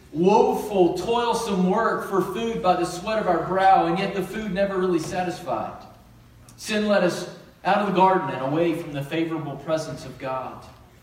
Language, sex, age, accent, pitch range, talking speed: English, male, 40-59, American, 170-210 Hz, 175 wpm